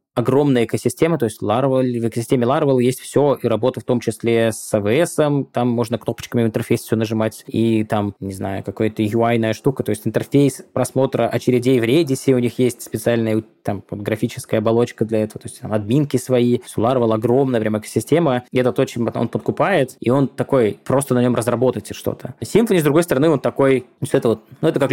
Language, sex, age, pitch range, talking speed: Russian, male, 20-39, 115-135 Hz, 200 wpm